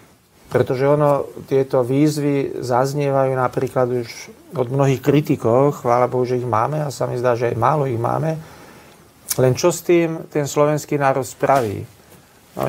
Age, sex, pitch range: 40-59, male, 130-150 Hz